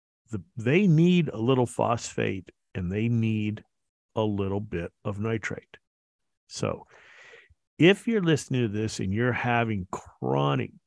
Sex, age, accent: male, 50-69, American